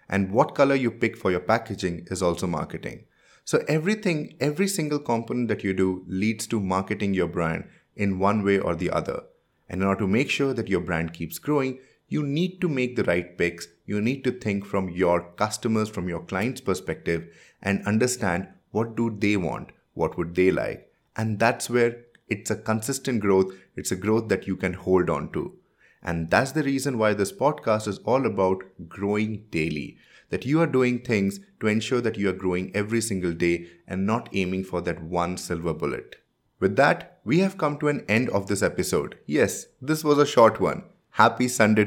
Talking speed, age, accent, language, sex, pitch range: 200 wpm, 30-49, Indian, English, male, 95-125 Hz